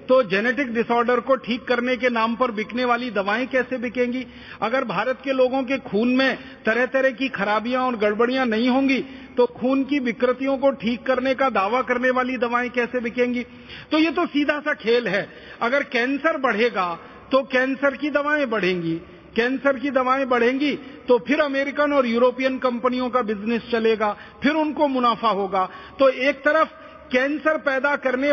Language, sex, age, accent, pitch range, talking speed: Hindi, male, 50-69, native, 230-275 Hz, 170 wpm